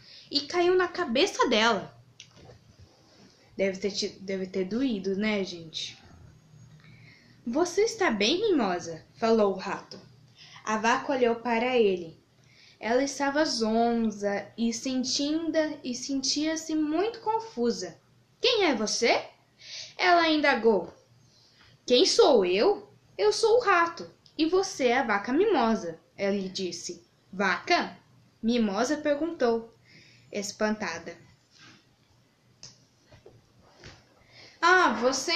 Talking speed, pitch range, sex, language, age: 100 wpm, 195-310 Hz, female, Portuguese, 10-29